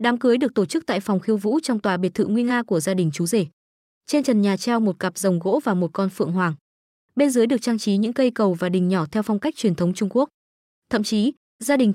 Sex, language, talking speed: female, Vietnamese, 275 wpm